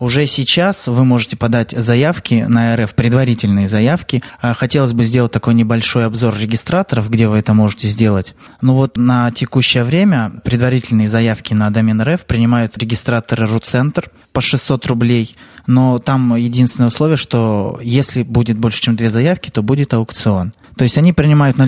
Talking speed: 160 wpm